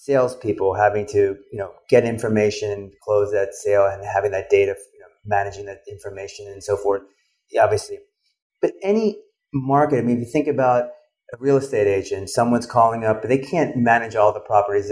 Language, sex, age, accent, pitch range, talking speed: English, male, 30-49, American, 110-150 Hz, 185 wpm